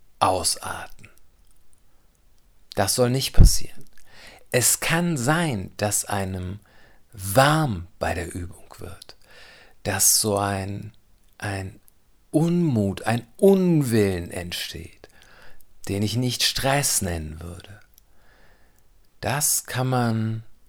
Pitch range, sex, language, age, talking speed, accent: 90-115 Hz, male, German, 50-69, 95 wpm, German